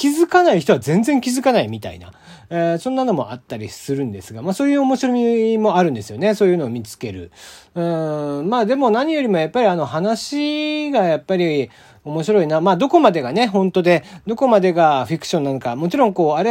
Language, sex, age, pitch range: Japanese, male, 40-59, 130-205 Hz